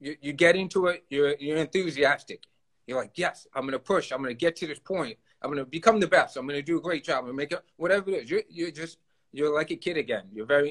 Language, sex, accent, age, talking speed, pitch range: English, male, American, 30-49, 265 wpm, 130-165 Hz